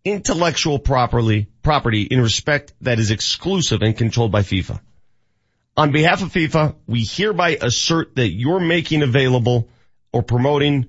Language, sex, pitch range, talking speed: English, male, 110-155 Hz, 130 wpm